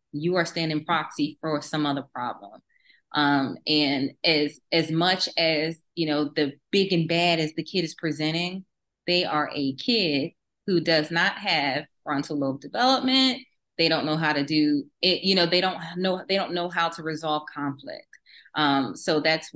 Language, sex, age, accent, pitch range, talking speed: English, female, 20-39, American, 150-180 Hz, 180 wpm